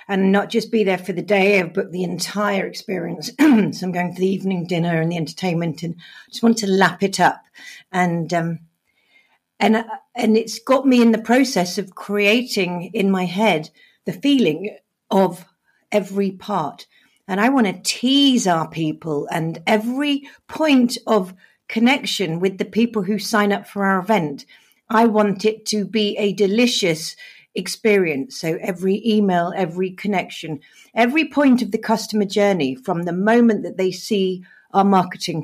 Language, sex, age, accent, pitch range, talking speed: English, female, 50-69, British, 175-220 Hz, 165 wpm